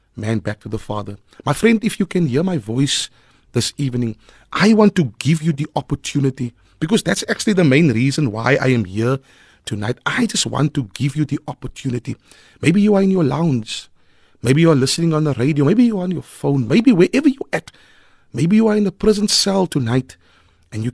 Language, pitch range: English, 115-160 Hz